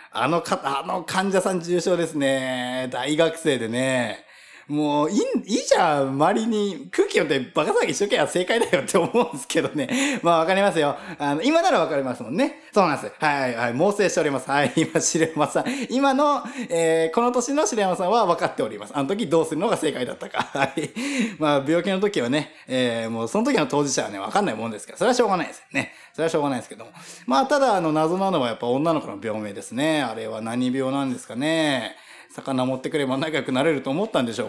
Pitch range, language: 130-200 Hz, Japanese